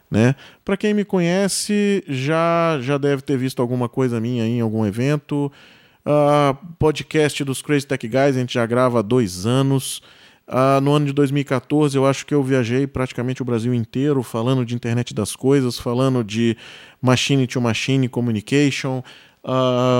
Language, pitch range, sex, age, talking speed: Portuguese, 115-145 Hz, male, 20-39, 160 wpm